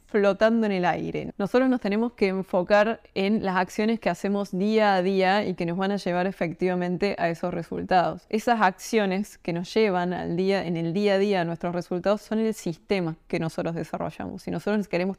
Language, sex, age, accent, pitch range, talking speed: Spanish, female, 20-39, Argentinian, 180-205 Hz, 195 wpm